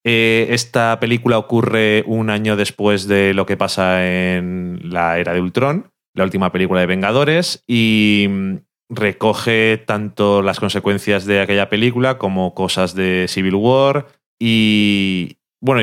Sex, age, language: male, 30-49, Spanish